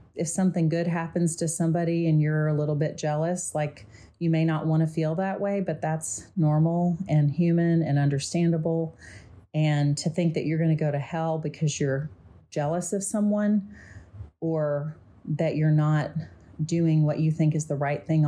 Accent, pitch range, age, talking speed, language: American, 145-165 Hz, 30-49, 180 wpm, English